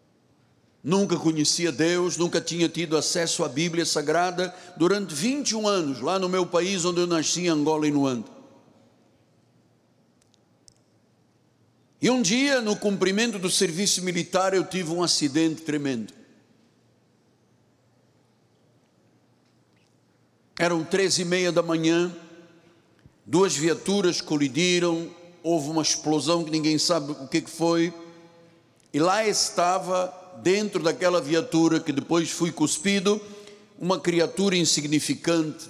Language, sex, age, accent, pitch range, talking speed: Portuguese, male, 60-79, Brazilian, 145-175 Hz, 115 wpm